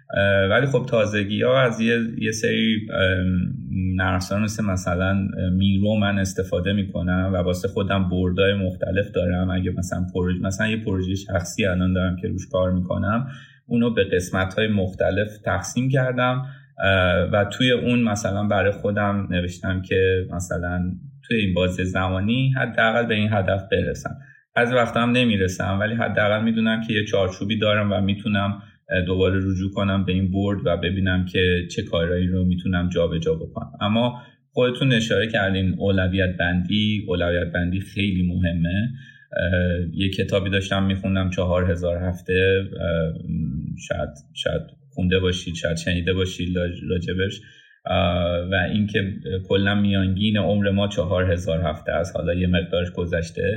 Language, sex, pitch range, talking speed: Persian, male, 90-105 Hz, 145 wpm